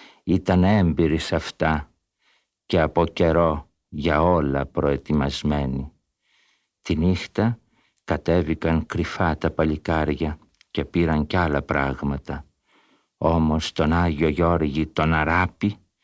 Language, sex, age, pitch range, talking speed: Greek, male, 60-79, 75-90 Hz, 100 wpm